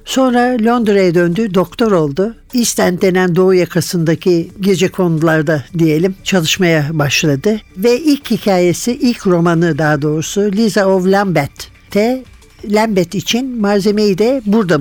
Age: 60-79